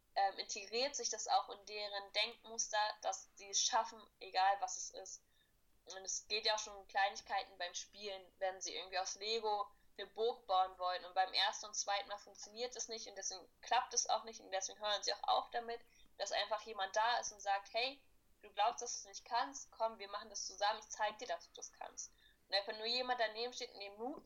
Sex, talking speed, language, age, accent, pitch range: female, 230 wpm, German, 10-29, German, 205-240 Hz